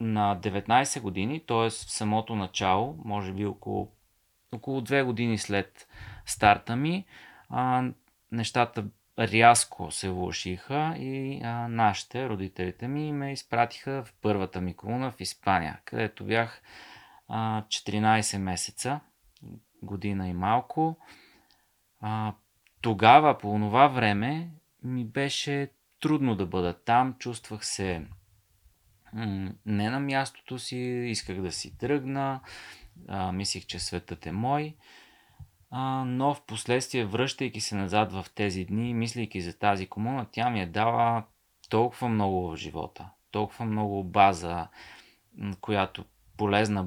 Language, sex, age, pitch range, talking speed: Bulgarian, male, 30-49, 100-125 Hz, 120 wpm